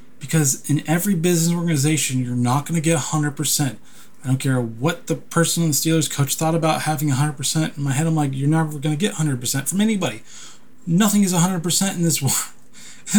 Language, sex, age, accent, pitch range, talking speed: English, male, 20-39, American, 145-195 Hz, 200 wpm